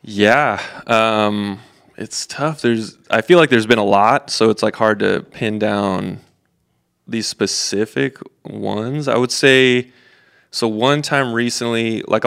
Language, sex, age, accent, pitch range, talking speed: English, male, 20-39, American, 105-115 Hz, 145 wpm